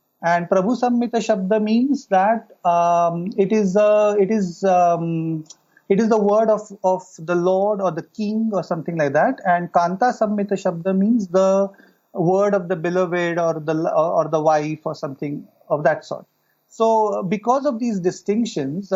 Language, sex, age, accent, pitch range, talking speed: English, male, 30-49, Indian, 170-215 Hz, 170 wpm